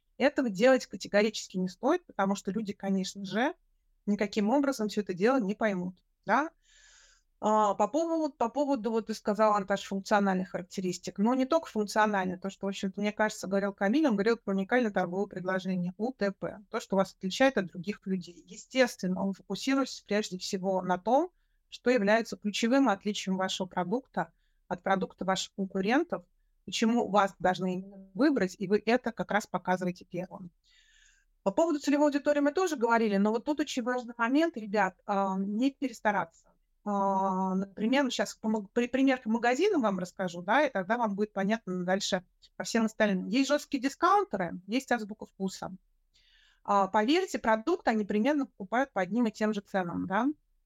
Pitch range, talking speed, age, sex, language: 195-250 Hz, 155 wpm, 30-49, female, Russian